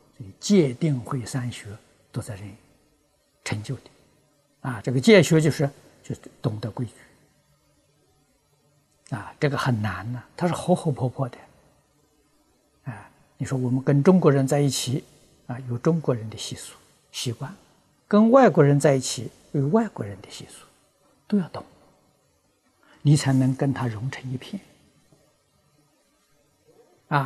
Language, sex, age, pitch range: Chinese, male, 60-79, 130-160 Hz